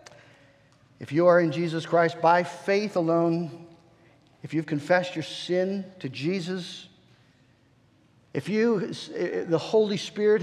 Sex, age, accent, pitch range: male, 50-69, American, 145-180 Hz